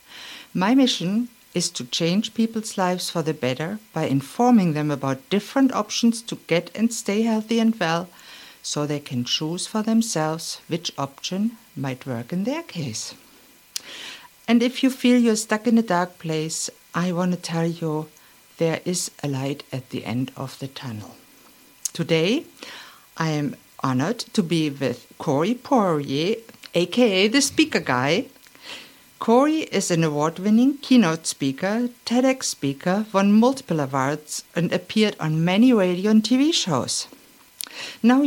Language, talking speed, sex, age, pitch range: English, 145 wpm, female, 50-69, 155-240 Hz